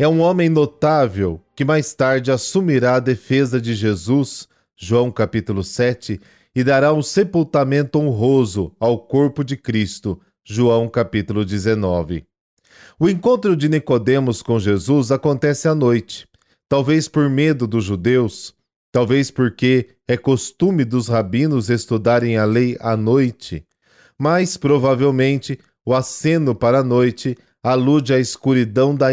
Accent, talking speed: Brazilian, 130 wpm